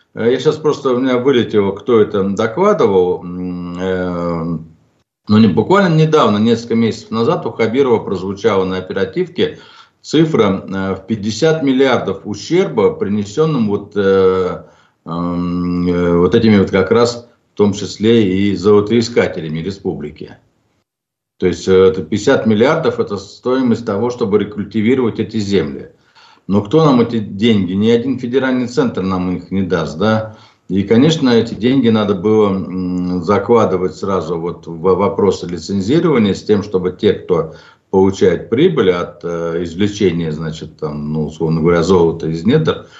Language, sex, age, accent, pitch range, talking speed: Russian, male, 50-69, native, 90-115 Hz, 125 wpm